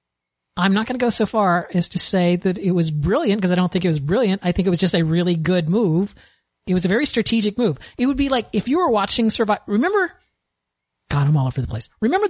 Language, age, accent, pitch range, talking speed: English, 40-59, American, 155-210 Hz, 260 wpm